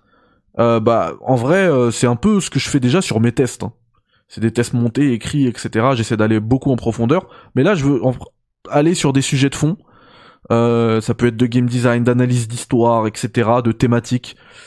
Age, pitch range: 20-39, 115-140 Hz